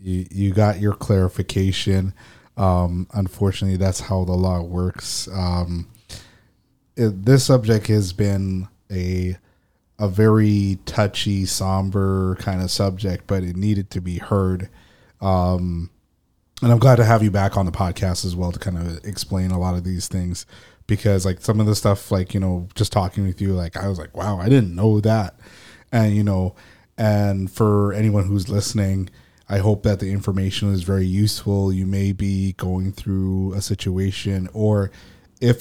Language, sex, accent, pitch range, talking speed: English, male, American, 95-105 Hz, 170 wpm